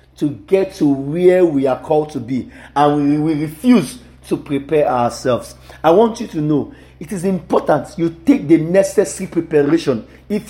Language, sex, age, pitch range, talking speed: English, male, 40-59, 140-185 Hz, 170 wpm